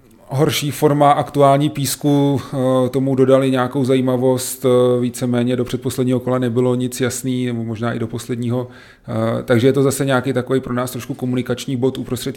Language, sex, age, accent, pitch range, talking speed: Czech, male, 30-49, native, 110-125 Hz, 155 wpm